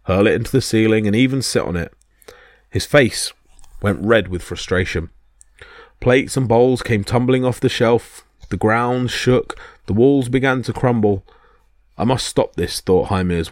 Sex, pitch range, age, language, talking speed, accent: male, 95-125 Hz, 30-49, English, 170 wpm, British